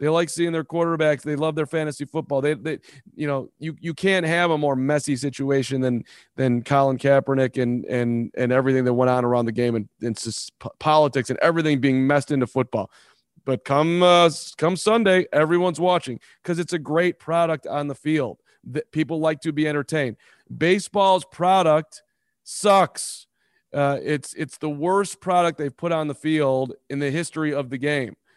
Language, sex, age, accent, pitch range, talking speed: English, male, 30-49, American, 135-170 Hz, 180 wpm